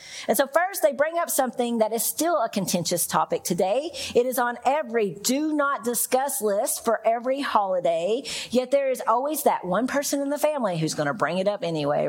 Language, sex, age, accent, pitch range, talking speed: English, female, 40-59, American, 200-260 Hz, 210 wpm